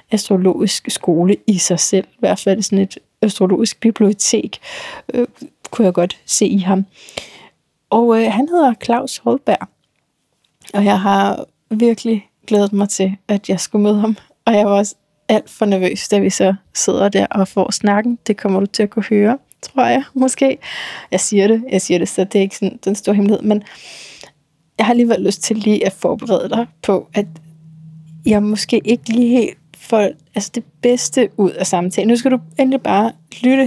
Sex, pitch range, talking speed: female, 195-230 Hz, 190 wpm